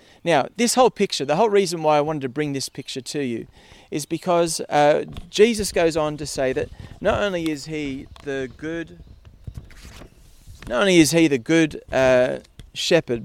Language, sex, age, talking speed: English, male, 30-49, 170 wpm